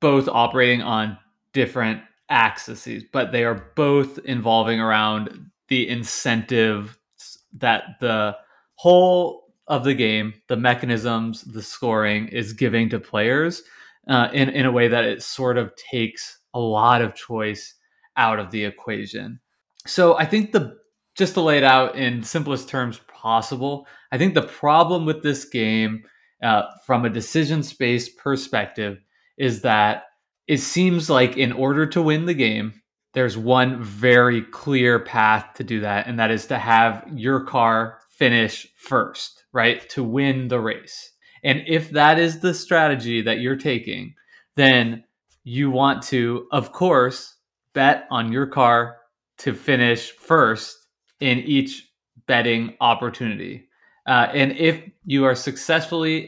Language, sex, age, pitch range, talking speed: English, male, 20-39, 115-145 Hz, 145 wpm